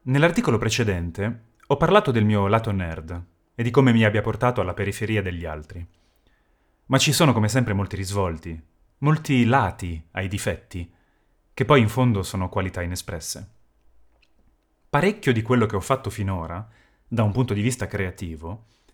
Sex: male